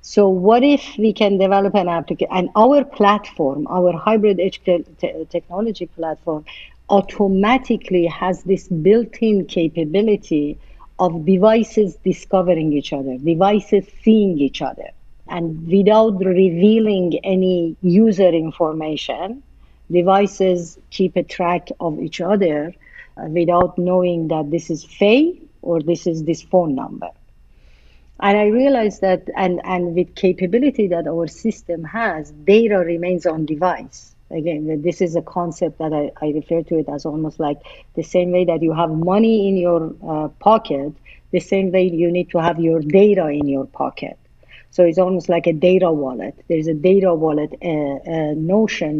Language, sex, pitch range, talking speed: English, female, 160-195 Hz, 155 wpm